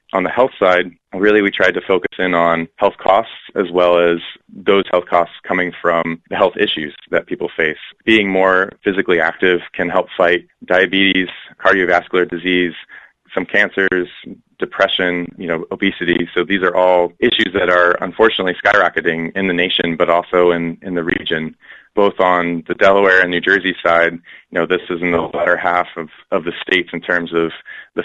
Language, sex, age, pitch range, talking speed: English, male, 20-39, 85-90 Hz, 180 wpm